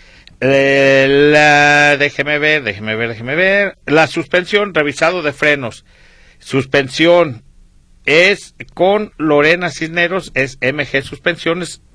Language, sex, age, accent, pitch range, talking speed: Spanish, male, 50-69, Mexican, 135-175 Hz, 100 wpm